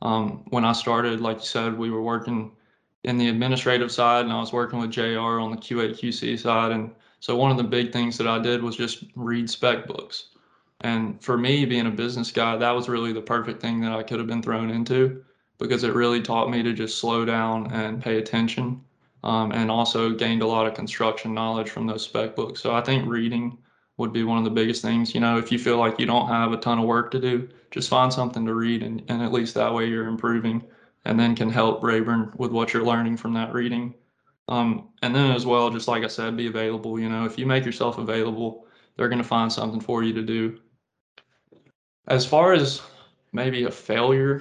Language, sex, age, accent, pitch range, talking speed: English, male, 20-39, American, 115-120 Hz, 230 wpm